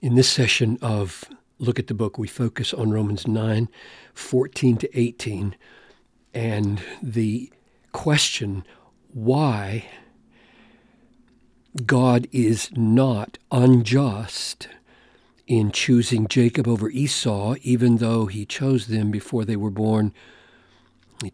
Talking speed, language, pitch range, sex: 110 wpm, English, 105-125 Hz, male